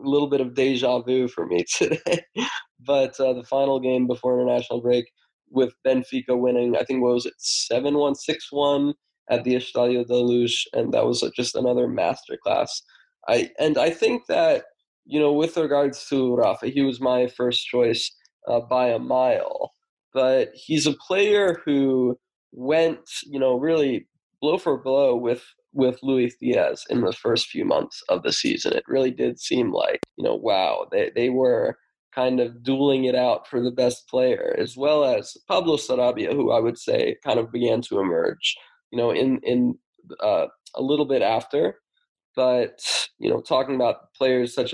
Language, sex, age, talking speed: English, male, 20-39, 180 wpm